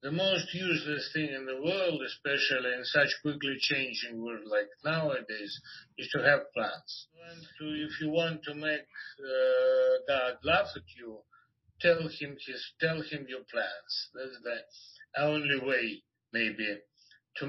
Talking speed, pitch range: 135 wpm, 135-185 Hz